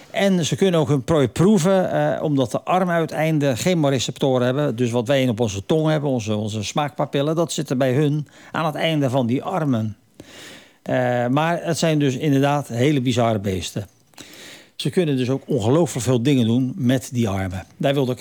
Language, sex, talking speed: Dutch, male, 195 wpm